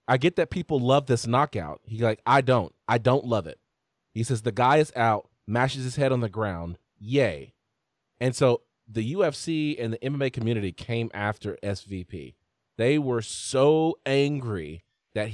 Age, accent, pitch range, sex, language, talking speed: 30-49, American, 110-140 Hz, male, English, 170 wpm